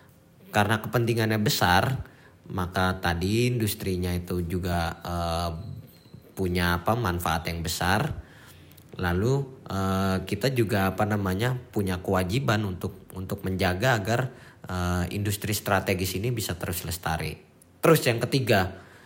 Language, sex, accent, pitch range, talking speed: Indonesian, male, native, 95-125 Hz, 115 wpm